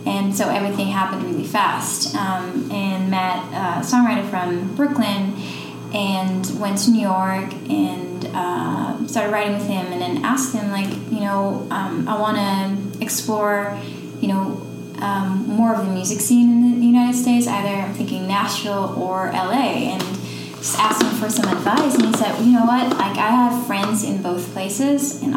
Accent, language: American, English